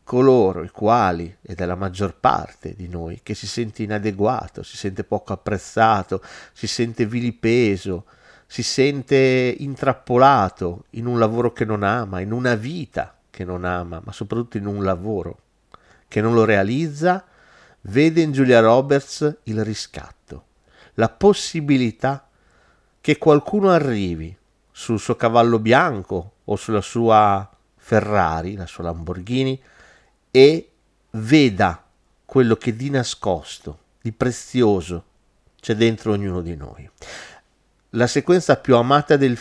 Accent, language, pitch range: native, Italian, 95-130 Hz